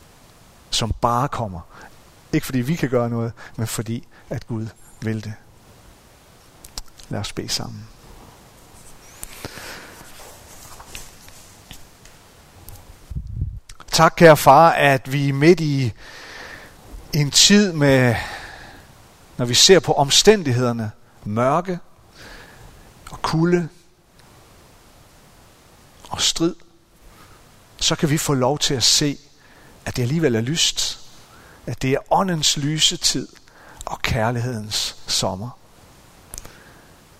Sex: male